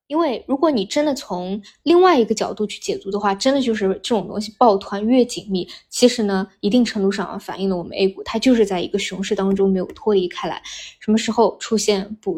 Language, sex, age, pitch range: Chinese, female, 20-39, 195-220 Hz